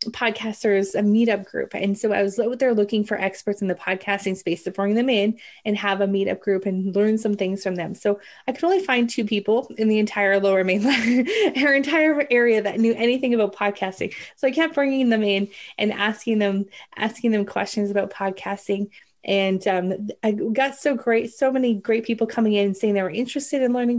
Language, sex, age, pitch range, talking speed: English, female, 20-39, 195-230 Hz, 210 wpm